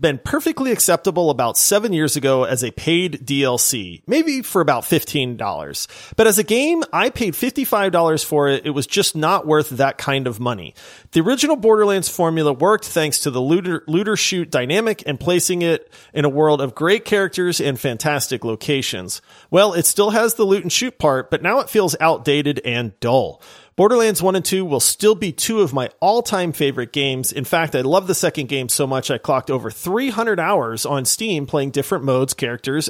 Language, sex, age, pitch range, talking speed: English, male, 40-59, 135-195 Hz, 195 wpm